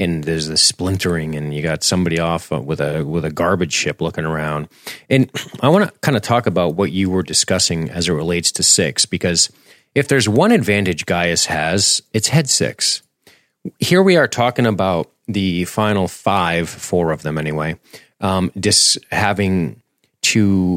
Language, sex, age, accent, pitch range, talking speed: English, male, 30-49, American, 85-110 Hz, 175 wpm